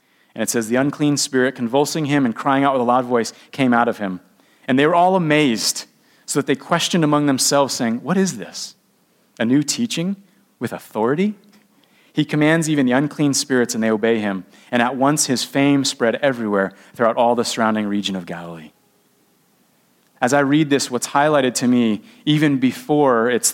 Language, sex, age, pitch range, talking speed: English, male, 30-49, 120-145 Hz, 190 wpm